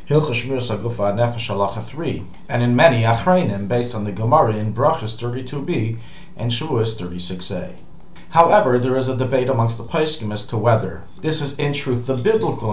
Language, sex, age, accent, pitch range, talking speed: English, male, 40-59, American, 100-135 Hz, 170 wpm